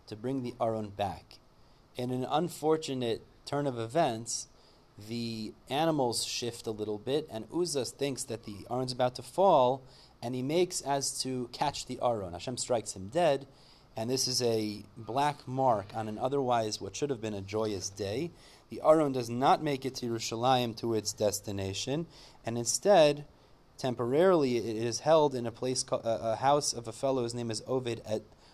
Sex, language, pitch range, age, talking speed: male, English, 110-135 Hz, 30-49, 180 wpm